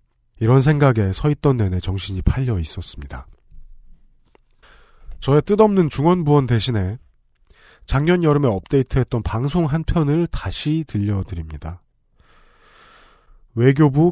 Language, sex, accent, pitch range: Korean, male, native, 100-155 Hz